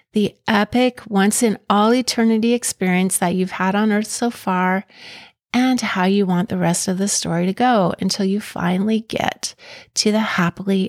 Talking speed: 175 wpm